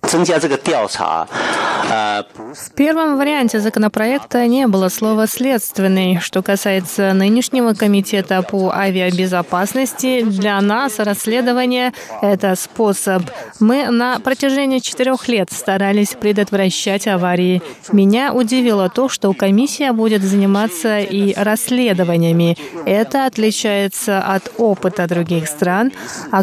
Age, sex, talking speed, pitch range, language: 20-39, female, 100 wpm, 190-240 Hz, Russian